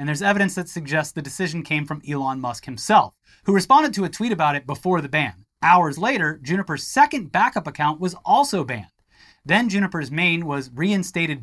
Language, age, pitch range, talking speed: English, 30-49, 155-210 Hz, 190 wpm